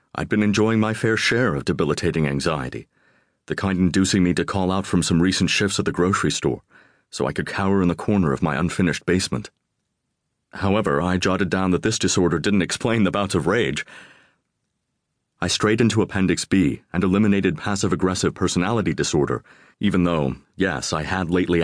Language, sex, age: English, male, 30-49